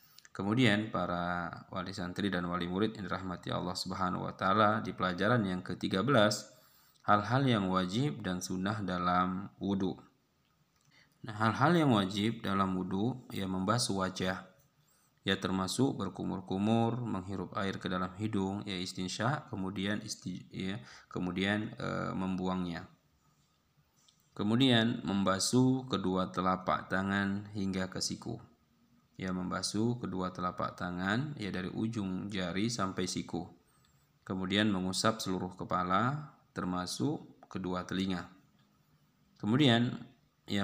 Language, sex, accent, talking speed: Indonesian, male, native, 115 wpm